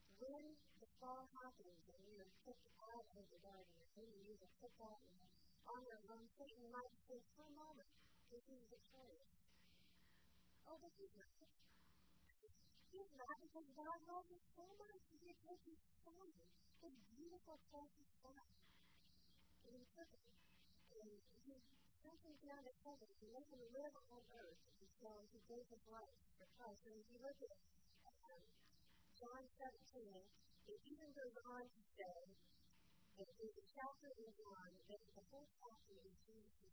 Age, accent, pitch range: 30-49, American, 195-265 Hz